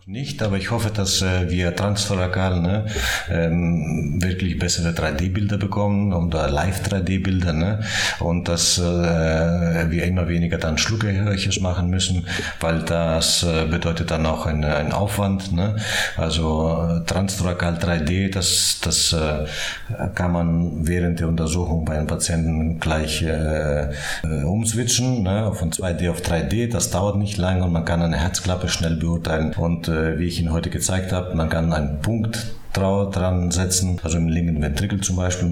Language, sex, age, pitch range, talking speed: German, male, 50-69, 80-95 Hz, 145 wpm